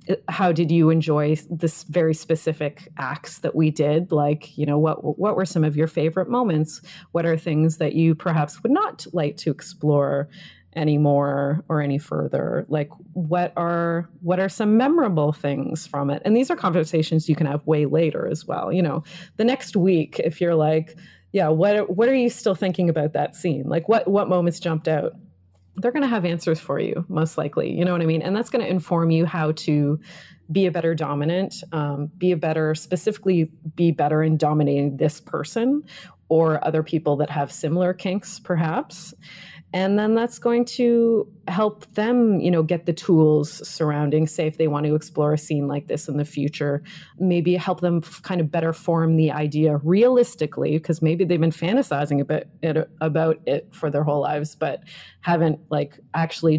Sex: female